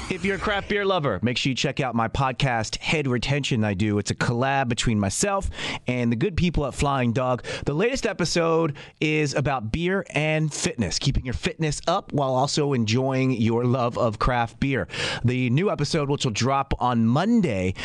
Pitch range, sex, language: 125-160 Hz, male, English